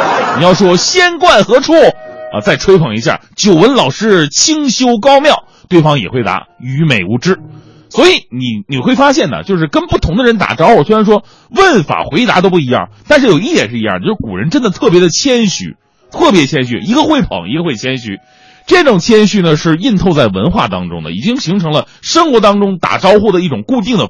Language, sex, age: Chinese, male, 30-49